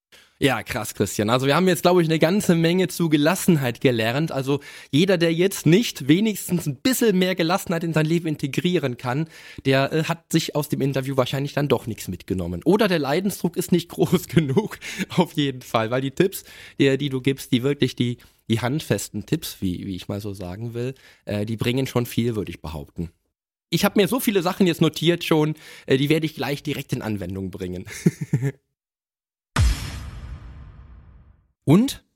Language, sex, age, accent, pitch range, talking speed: German, male, 20-39, German, 115-175 Hz, 180 wpm